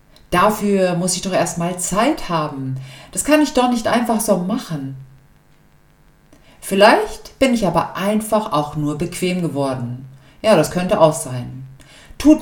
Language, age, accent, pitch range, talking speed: German, 50-69, German, 140-220 Hz, 145 wpm